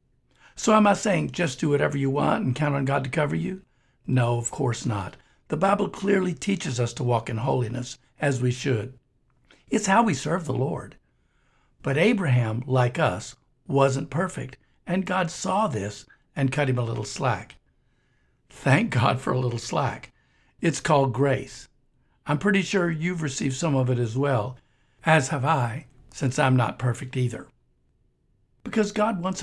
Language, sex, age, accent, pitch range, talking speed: English, male, 60-79, American, 120-155 Hz, 170 wpm